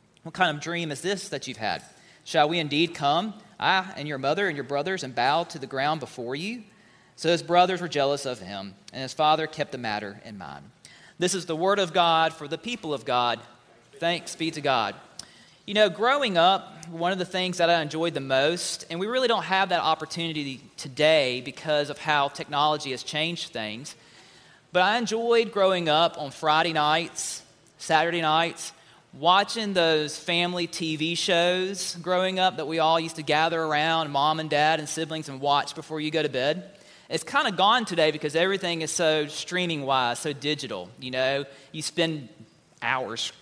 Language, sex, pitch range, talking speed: English, male, 140-180 Hz, 190 wpm